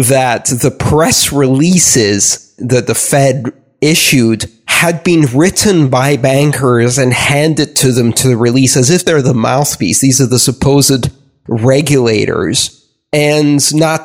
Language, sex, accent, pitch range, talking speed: English, male, American, 125-145 Hz, 130 wpm